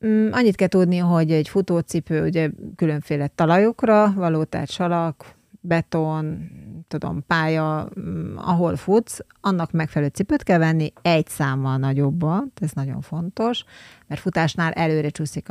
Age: 30-49